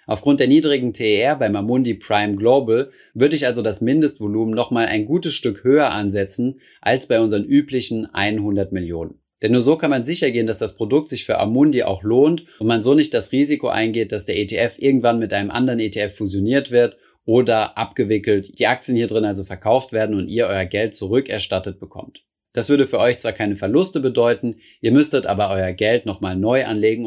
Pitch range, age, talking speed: 100-125 Hz, 30-49, 195 wpm